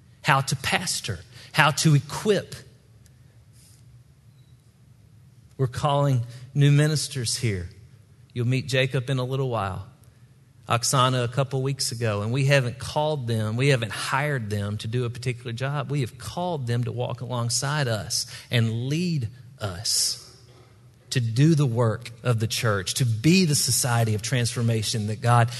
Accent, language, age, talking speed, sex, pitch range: American, English, 40-59, 150 wpm, male, 115-135 Hz